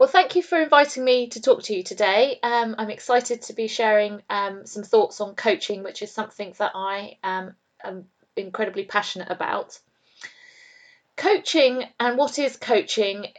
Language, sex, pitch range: English, female, 200-290 Hz